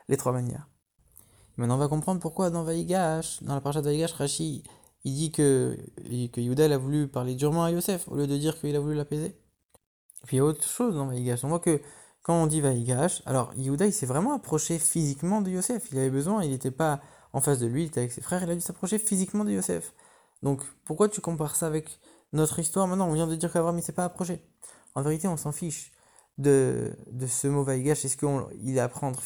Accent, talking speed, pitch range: French, 240 wpm, 140-180 Hz